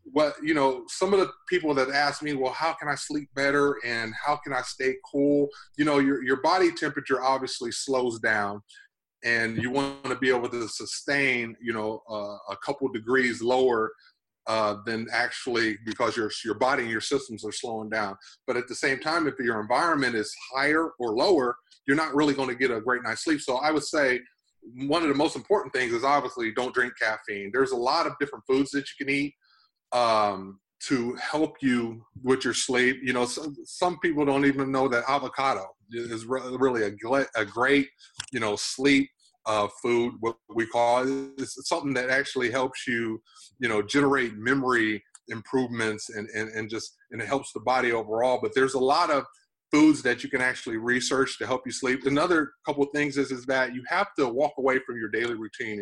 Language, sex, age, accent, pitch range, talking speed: English, male, 30-49, American, 115-140 Hz, 205 wpm